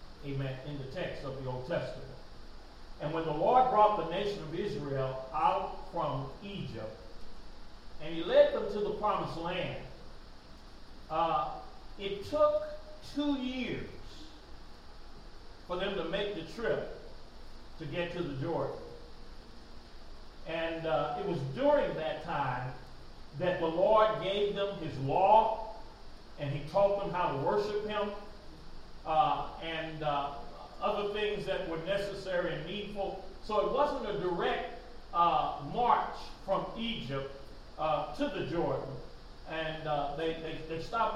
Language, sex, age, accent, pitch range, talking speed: English, male, 40-59, American, 150-210 Hz, 140 wpm